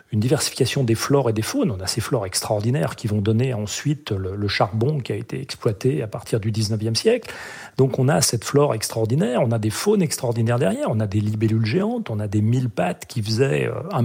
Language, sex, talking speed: French, male, 225 wpm